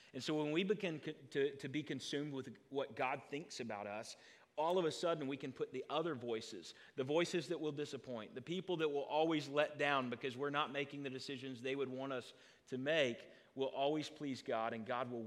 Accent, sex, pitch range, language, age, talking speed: American, male, 125-155 Hz, English, 40-59, 220 wpm